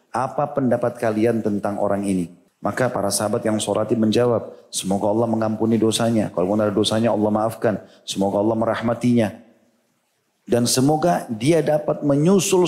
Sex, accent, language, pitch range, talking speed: male, native, Indonesian, 105-135 Hz, 140 wpm